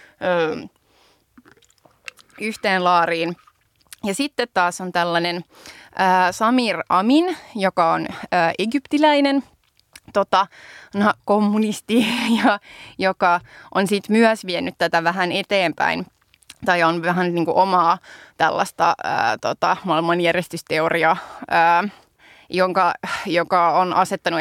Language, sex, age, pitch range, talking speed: Finnish, female, 20-39, 170-200 Hz, 90 wpm